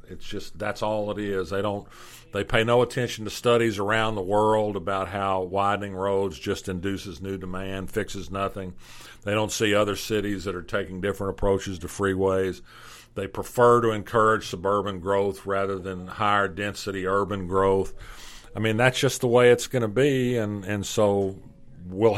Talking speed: 175 wpm